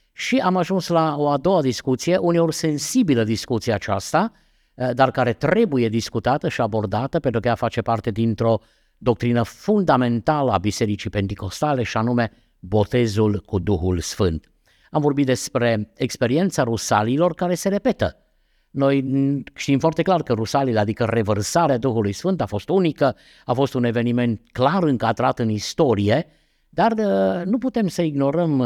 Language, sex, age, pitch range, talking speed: Romanian, male, 50-69, 120-170 Hz, 145 wpm